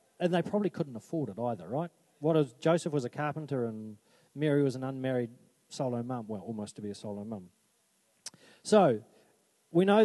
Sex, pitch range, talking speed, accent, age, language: male, 135-175 Hz, 185 wpm, Australian, 40-59, English